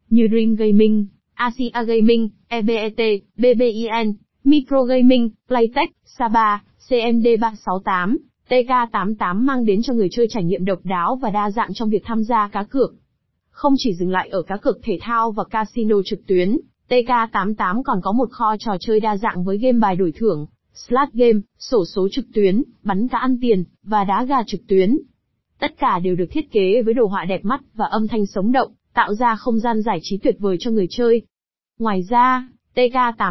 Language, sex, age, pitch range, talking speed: Vietnamese, female, 20-39, 200-250 Hz, 185 wpm